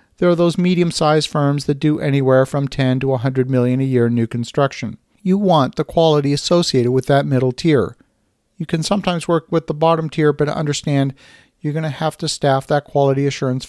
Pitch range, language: 130-160 Hz, English